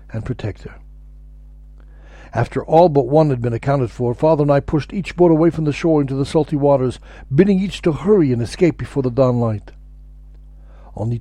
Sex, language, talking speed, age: male, English, 195 wpm, 60-79